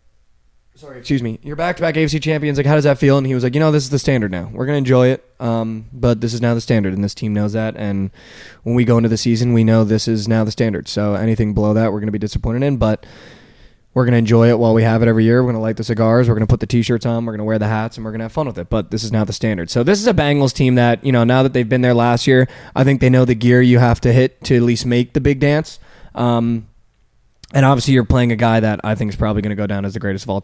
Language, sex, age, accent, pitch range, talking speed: English, male, 20-39, American, 110-125 Hz, 320 wpm